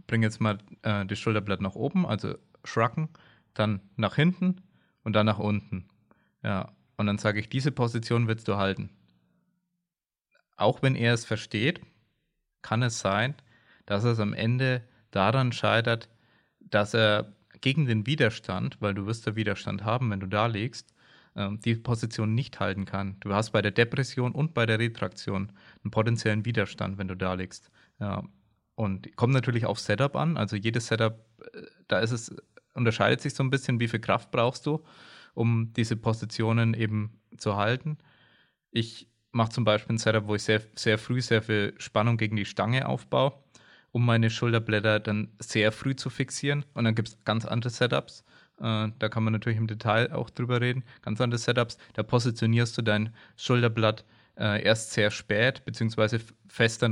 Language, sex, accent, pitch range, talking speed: German, male, German, 105-125 Hz, 170 wpm